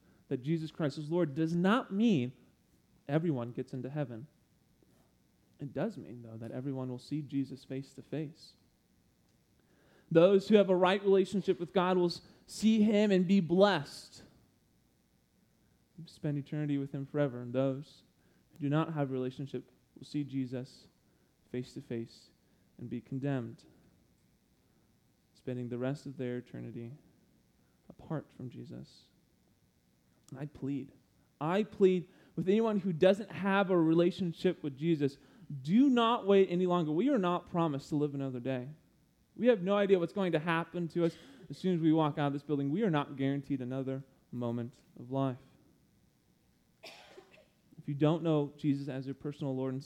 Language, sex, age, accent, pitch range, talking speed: English, male, 30-49, American, 130-175 Hz, 160 wpm